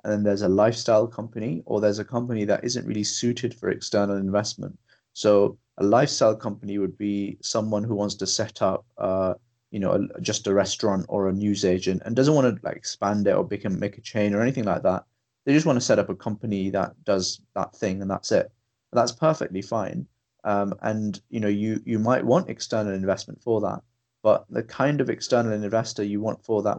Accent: British